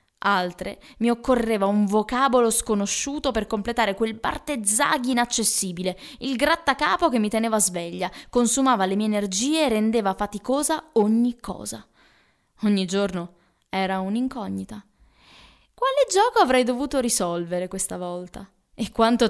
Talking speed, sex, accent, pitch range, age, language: 120 wpm, female, native, 190-240 Hz, 20-39, Italian